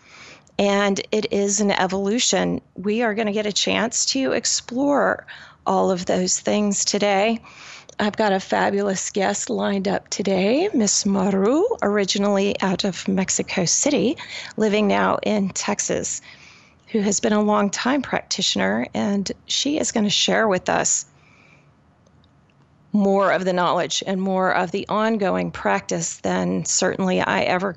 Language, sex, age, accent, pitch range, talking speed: English, female, 30-49, American, 195-220 Hz, 145 wpm